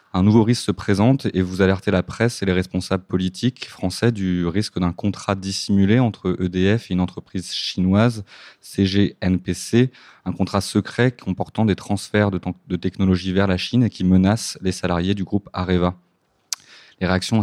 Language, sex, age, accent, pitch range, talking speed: French, male, 20-39, French, 90-105 Hz, 165 wpm